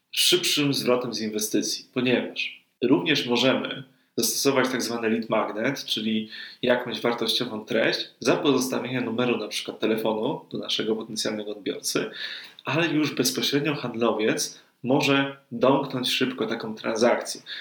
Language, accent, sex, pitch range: Polish, native, male, 115-140 Hz